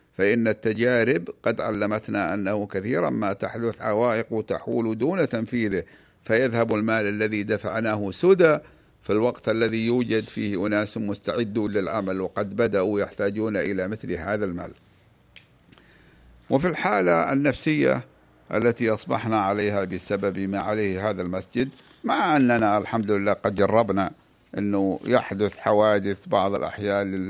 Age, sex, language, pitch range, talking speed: 60-79, male, Arabic, 100-115 Hz, 120 wpm